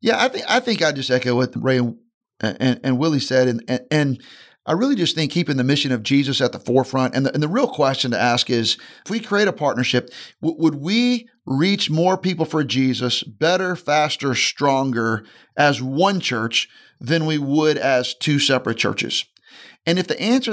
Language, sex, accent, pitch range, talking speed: English, male, American, 130-170 Hz, 200 wpm